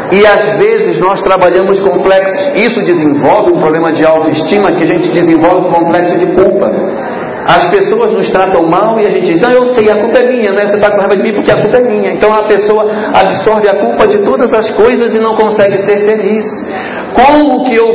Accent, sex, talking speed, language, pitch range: Brazilian, male, 220 wpm, Portuguese, 185-245 Hz